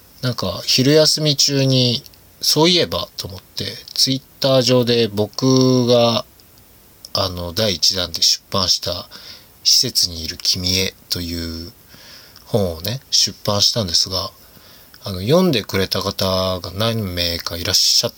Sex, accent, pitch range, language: male, native, 95-130 Hz, Japanese